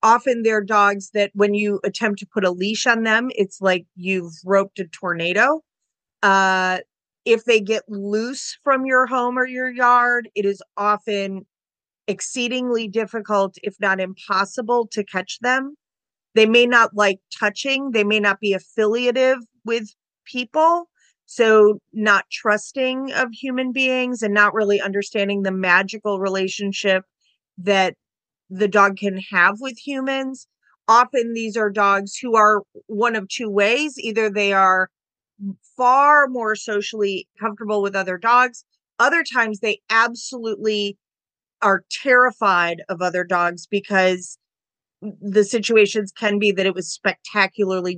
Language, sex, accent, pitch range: English, female, American, 195-230 Hz